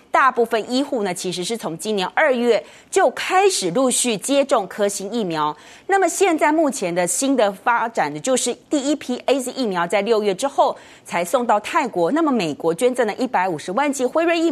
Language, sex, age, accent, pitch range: Chinese, female, 30-49, native, 200-305 Hz